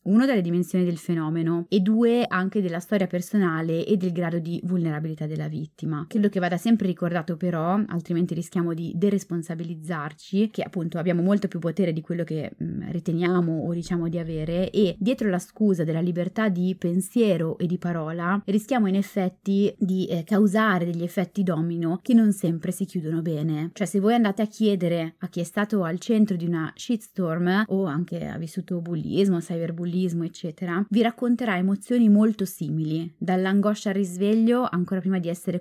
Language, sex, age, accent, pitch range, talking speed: Italian, female, 20-39, native, 170-200 Hz, 170 wpm